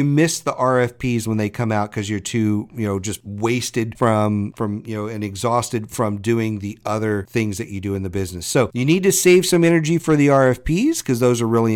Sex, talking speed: male, 235 wpm